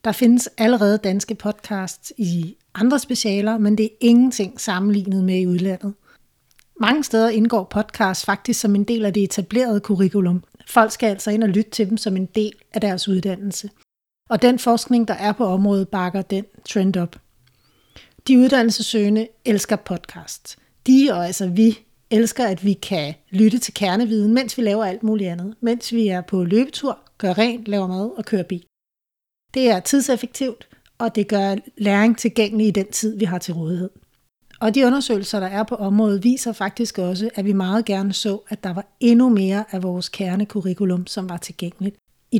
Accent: native